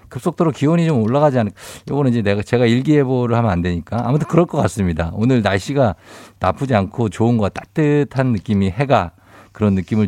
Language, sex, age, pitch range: Korean, male, 50-69, 95-145 Hz